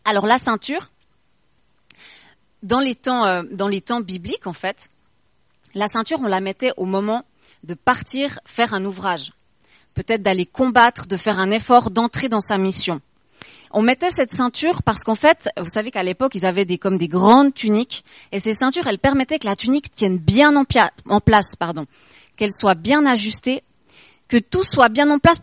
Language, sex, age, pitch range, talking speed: French, female, 30-49, 195-255 Hz, 185 wpm